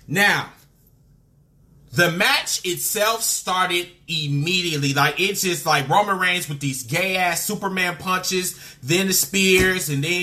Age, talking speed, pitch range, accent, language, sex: 30-49, 135 wpm, 140-185 Hz, American, English, male